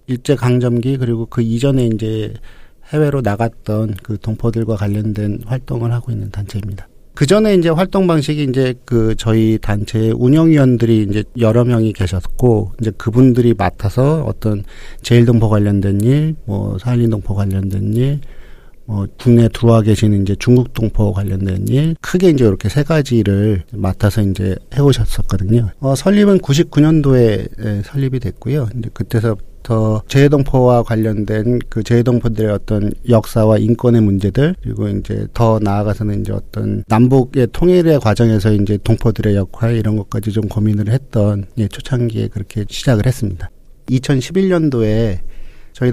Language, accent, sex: Korean, native, male